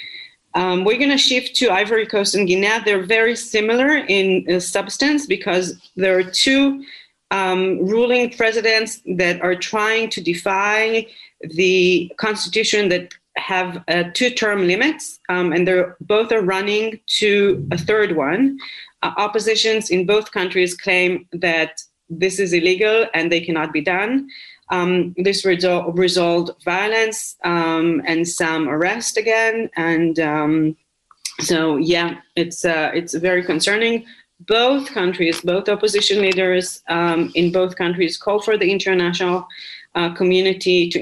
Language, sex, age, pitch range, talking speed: English, female, 30-49, 170-215 Hz, 140 wpm